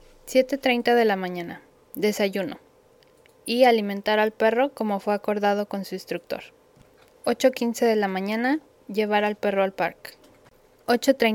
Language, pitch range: Spanish, 215-275 Hz